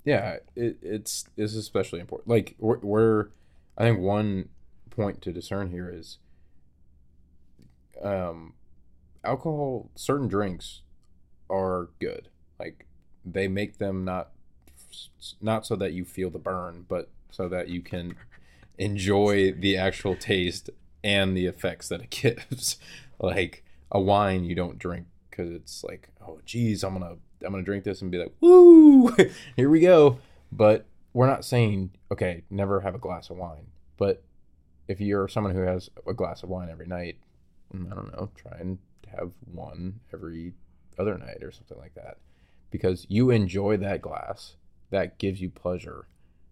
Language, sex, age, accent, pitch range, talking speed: English, male, 20-39, American, 80-100 Hz, 155 wpm